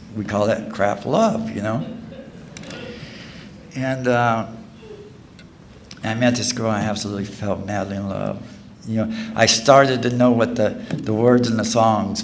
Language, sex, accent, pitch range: English, male, American, 105-120 Hz